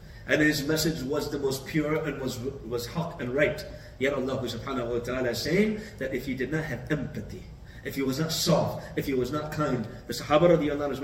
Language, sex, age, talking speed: English, male, 30-49, 210 wpm